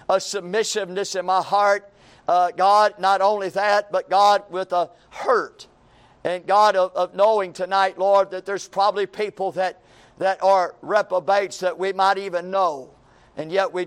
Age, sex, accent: 50-69, male, American